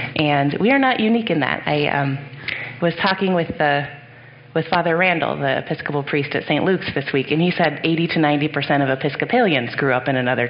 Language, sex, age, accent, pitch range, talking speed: English, female, 30-49, American, 140-170 Hz, 200 wpm